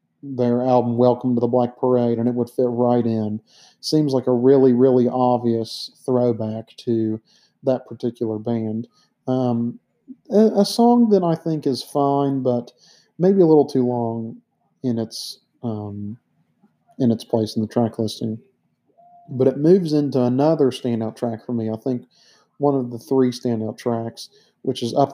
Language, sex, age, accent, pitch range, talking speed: English, male, 40-59, American, 120-140 Hz, 165 wpm